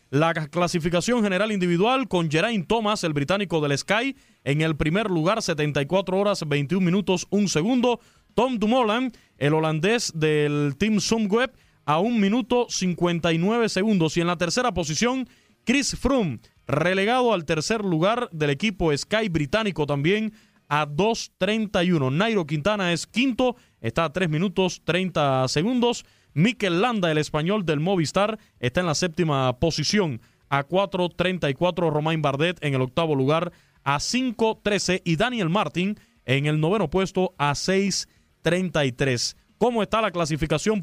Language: Spanish